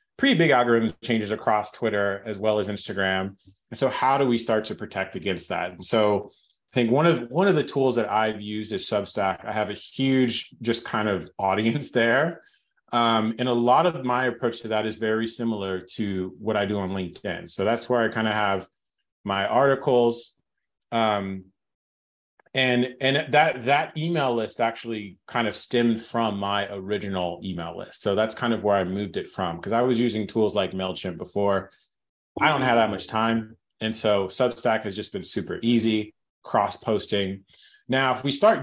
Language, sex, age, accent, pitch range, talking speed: English, male, 30-49, American, 105-125 Hz, 190 wpm